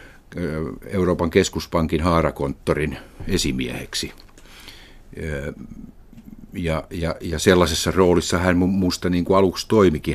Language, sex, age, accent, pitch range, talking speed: Finnish, male, 50-69, native, 80-90 Hz, 85 wpm